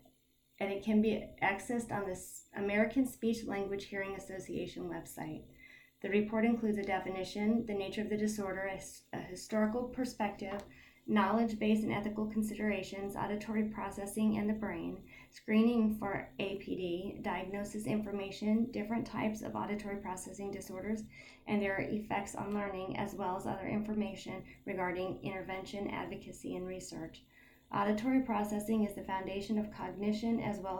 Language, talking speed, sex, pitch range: English, 140 wpm, female, 200-215 Hz